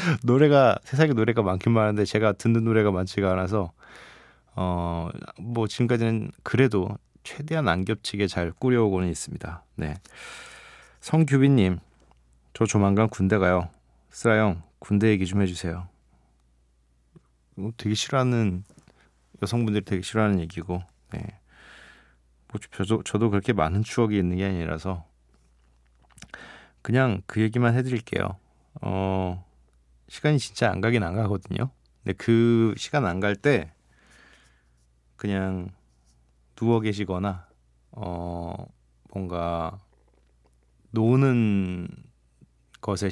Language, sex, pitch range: Korean, male, 85-115 Hz